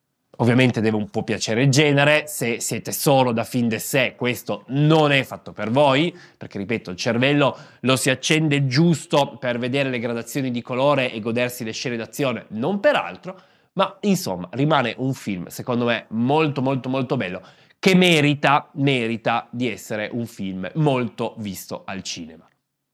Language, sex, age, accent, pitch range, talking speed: Italian, male, 20-39, native, 115-165 Hz, 165 wpm